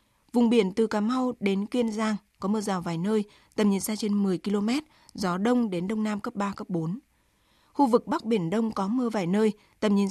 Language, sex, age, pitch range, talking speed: Vietnamese, female, 20-39, 195-235 Hz, 230 wpm